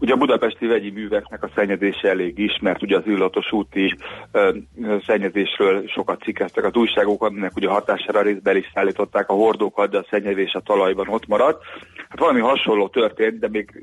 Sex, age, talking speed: male, 30-49, 180 wpm